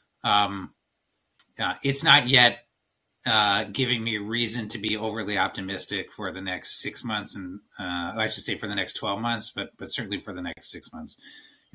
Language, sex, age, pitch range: English, male, 30-49, 100-115 Hz